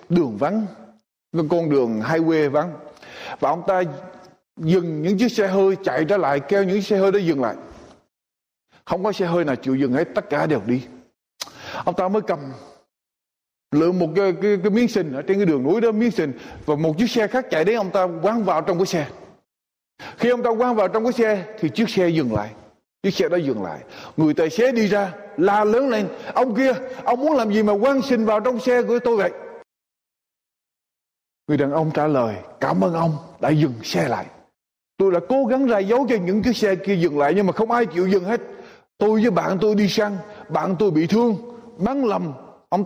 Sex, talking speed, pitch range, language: male, 220 wpm, 170-235 Hz, Vietnamese